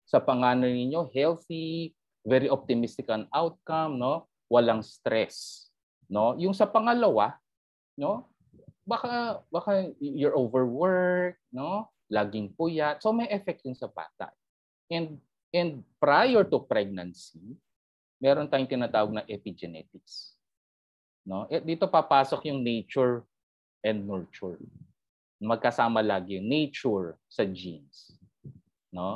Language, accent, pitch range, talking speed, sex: Filipino, native, 110-160 Hz, 110 wpm, male